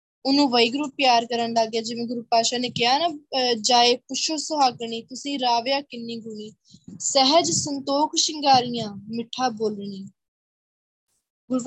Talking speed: 125 wpm